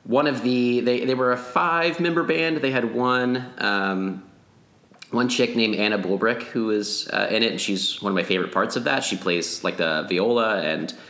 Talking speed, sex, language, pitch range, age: 205 wpm, male, English, 90-115 Hz, 30-49